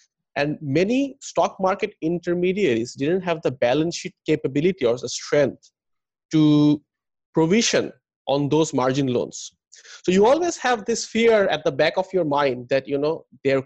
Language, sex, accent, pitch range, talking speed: English, male, Indian, 140-185 Hz, 160 wpm